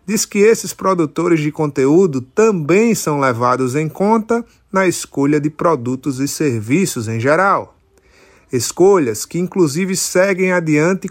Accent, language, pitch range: Brazilian, Portuguese, 140-195 Hz